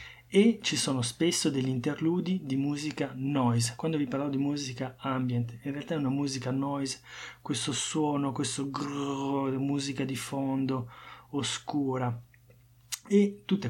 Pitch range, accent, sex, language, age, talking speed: 120-145 Hz, native, male, Italian, 30-49, 135 wpm